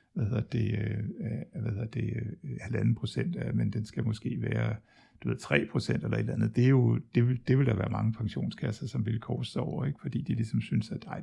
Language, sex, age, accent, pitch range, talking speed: Danish, male, 60-79, native, 110-145 Hz, 210 wpm